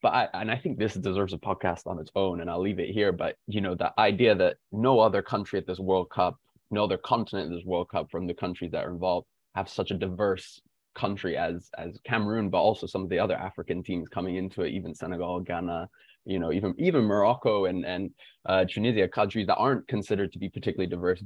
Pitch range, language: 95-115 Hz, English